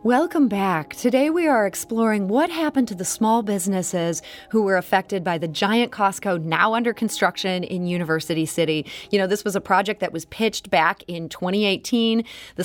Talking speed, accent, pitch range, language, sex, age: 180 wpm, American, 170-220 Hz, English, female, 30-49